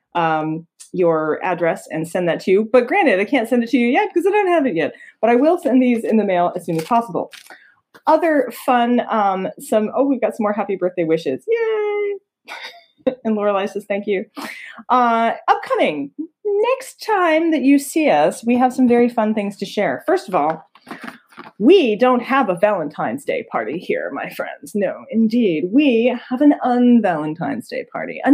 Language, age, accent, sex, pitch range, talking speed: English, 30-49, American, female, 185-280 Hz, 195 wpm